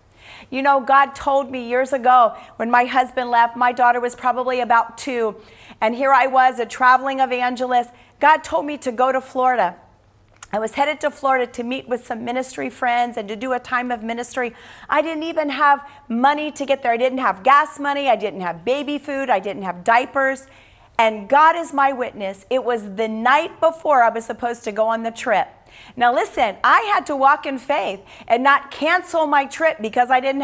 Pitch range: 235-290 Hz